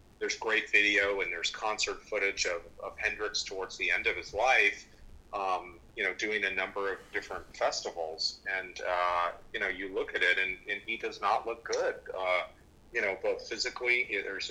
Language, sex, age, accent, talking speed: English, male, 40-59, American, 190 wpm